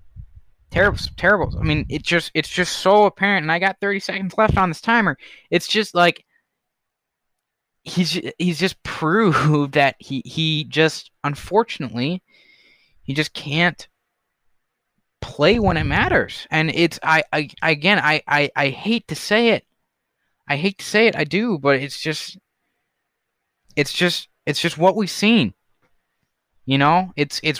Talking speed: 145 wpm